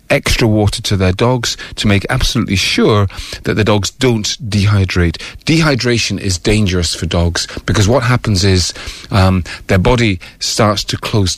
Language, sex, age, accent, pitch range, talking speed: English, male, 40-59, British, 95-115 Hz, 155 wpm